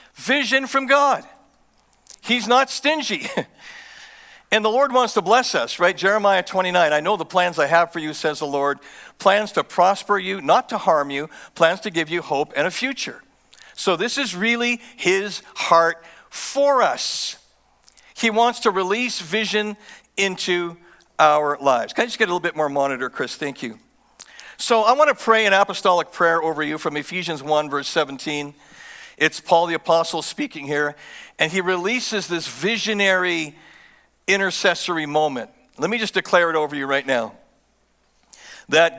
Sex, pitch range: male, 155-215 Hz